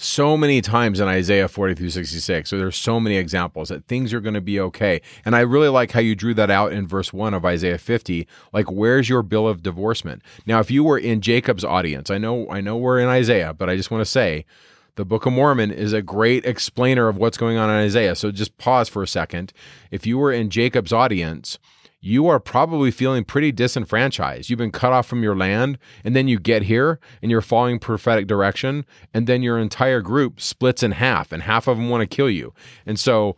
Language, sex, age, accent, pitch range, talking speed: English, male, 30-49, American, 100-125 Hz, 230 wpm